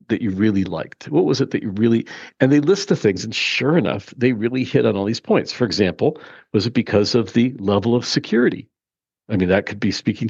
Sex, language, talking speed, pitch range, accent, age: male, English, 240 wpm, 105-130 Hz, American, 50-69